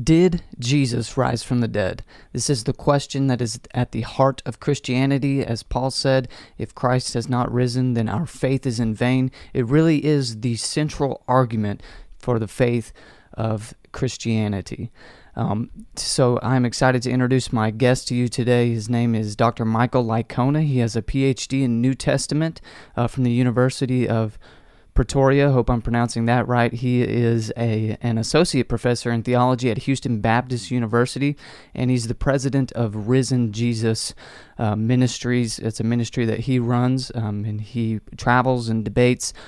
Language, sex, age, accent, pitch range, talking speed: English, male, 30-49, American, 115-130 Hz, 165 wpm